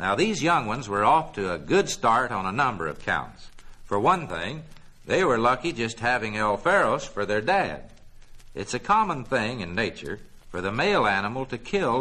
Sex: male